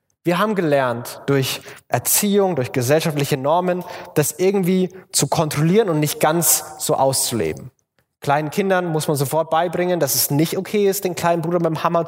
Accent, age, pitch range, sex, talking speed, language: German, 20-39, 140-185 Hz, male, 165 wpm, German